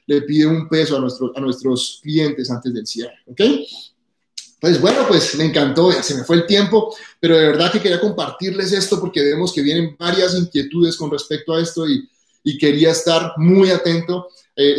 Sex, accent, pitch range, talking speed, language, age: male, Colombian, 145-170 Hz, 195 wpm, Spanish, 30-49